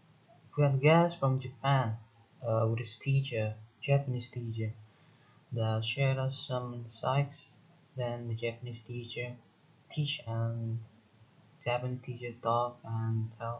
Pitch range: 120-145 Hz